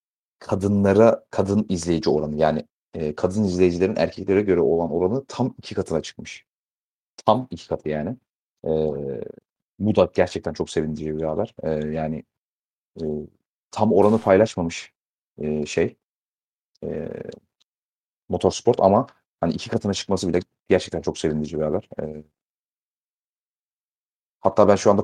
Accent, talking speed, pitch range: native, 125 wpm, 80-100 Hz